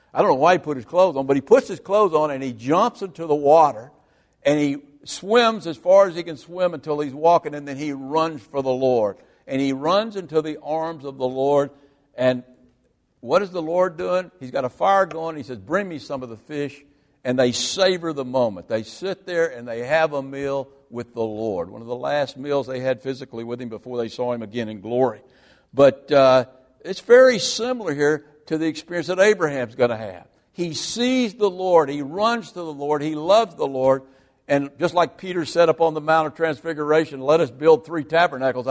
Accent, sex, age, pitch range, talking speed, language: American, male, 60-79, 135-175 Hz, 225 wpm, English